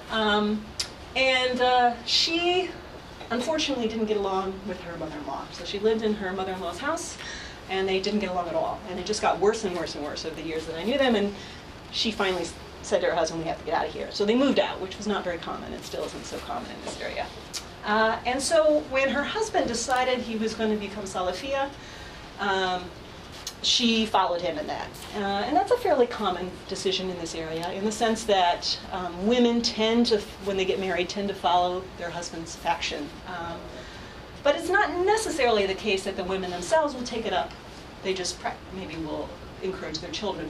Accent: American